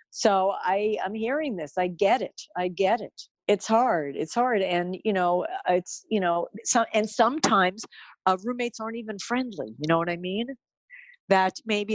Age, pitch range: 50-69, 175-230 Hz